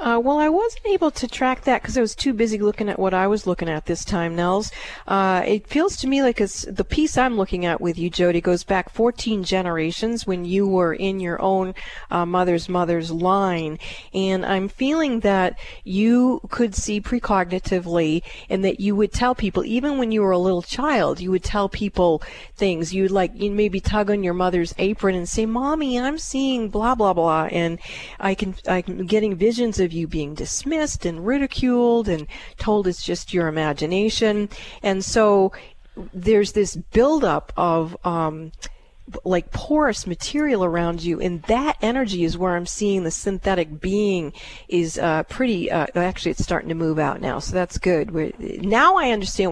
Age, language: 40-59, English